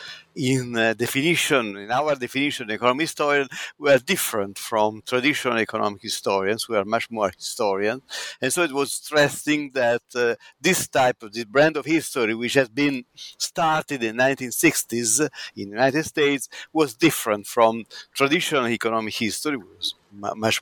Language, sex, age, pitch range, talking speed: English, male, 50-69, 115-150 Hz, 155 wpm